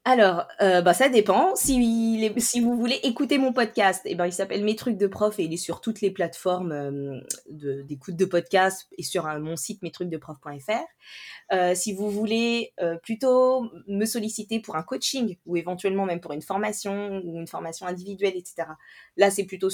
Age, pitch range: 20-39, 160-210 Hz